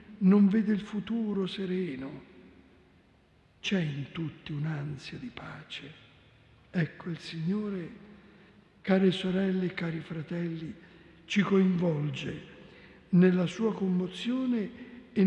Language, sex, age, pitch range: Italian, male, 60-79, 175-215 Hz